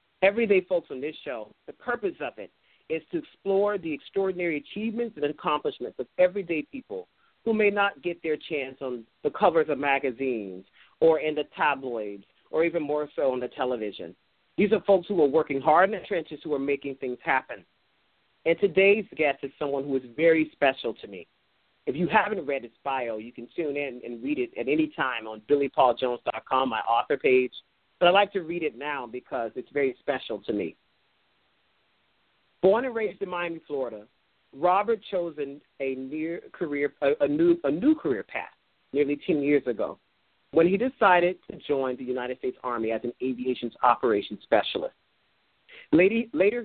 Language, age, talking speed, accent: English, 40-59, 175 wpm, American